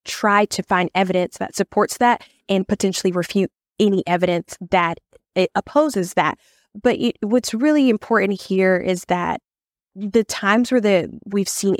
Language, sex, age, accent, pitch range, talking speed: English, female, 20-39, American, 180-215 Hz, 135 wpm